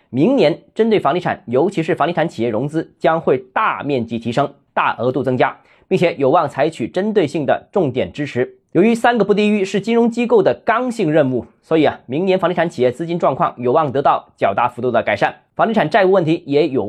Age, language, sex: 20-39, Chinese, male